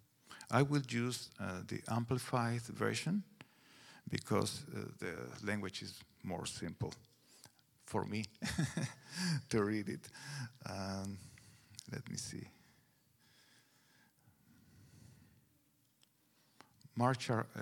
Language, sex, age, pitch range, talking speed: English, male, 50-69, 110-140 Hz, 80 wpm